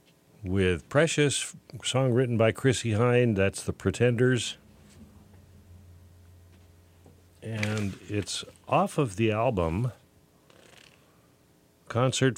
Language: English